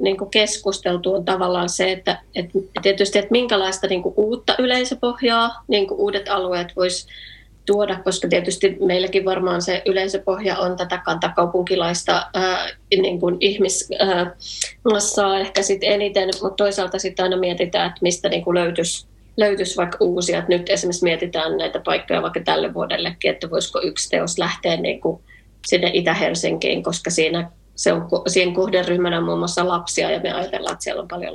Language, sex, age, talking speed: Finnish, female, 20-39, 155 wpm